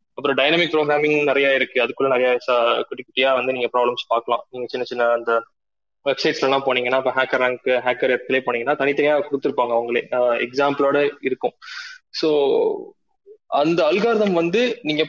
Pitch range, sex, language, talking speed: 130-170 Hz, male, Tamil, 85 wpm